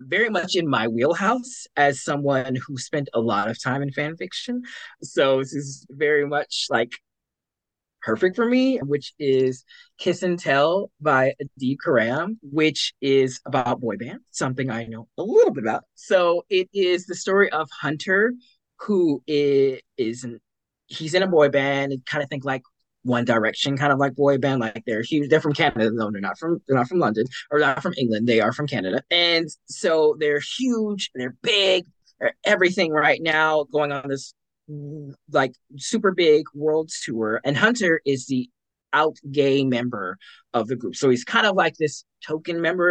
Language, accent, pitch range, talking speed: English, American, 135-175 Hz, 180 wpm